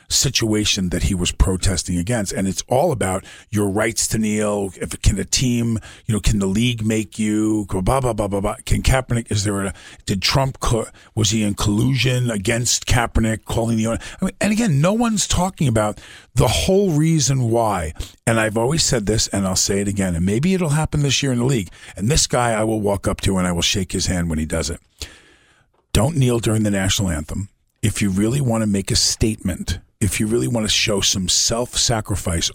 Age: 50-69